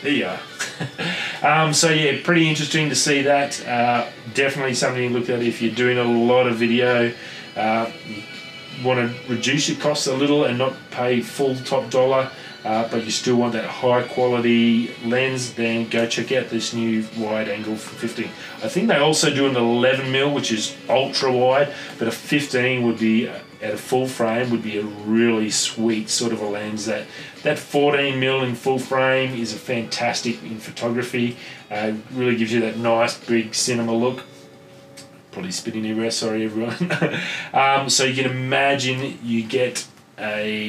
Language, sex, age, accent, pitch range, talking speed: English, male, 30-49, Australian, 115-135 Hz, 170 wpm